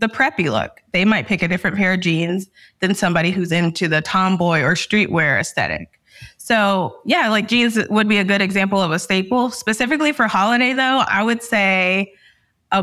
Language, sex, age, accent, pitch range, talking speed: English, female, 20-39, American, 180-215 Hz, 185 wpm